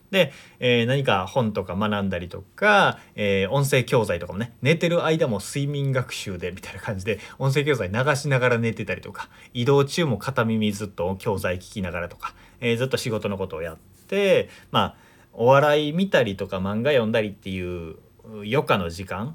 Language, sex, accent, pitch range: Japanese, male, native, 100-145 Hz